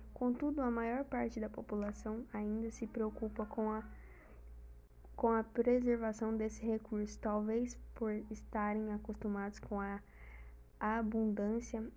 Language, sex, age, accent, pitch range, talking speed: Portuguese, female, 10-29, Brazilian, 205-225 Hz, 110 wpm